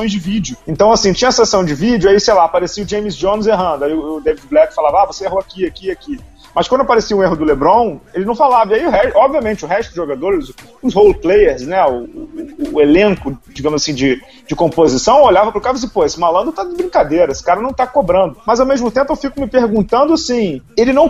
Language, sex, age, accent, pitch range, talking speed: Portuguese, male, 30-49, Brazilian, 175-245 Hz, 235 wpm